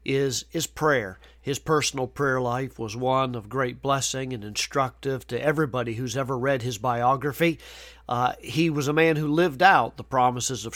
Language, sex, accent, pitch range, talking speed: English, male, American, 125-150 Hz, 175 wpm